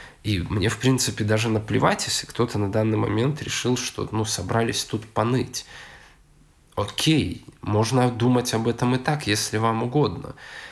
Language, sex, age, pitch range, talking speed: Russian, male, 20-39, 105-125 Hz, 150 wpm